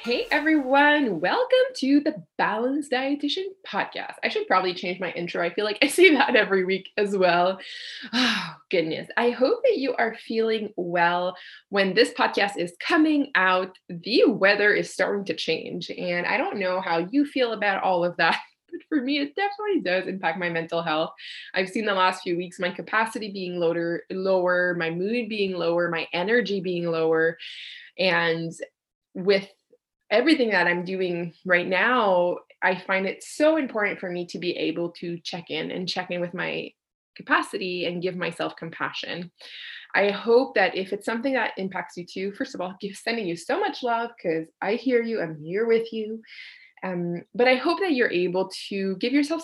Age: 20-39